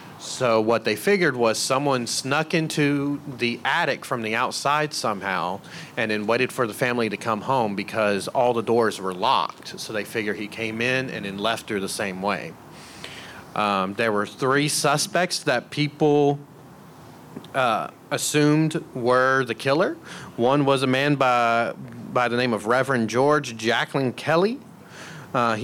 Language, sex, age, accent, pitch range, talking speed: English, male, 30-49, American, 115-145 Hz, 160 wpm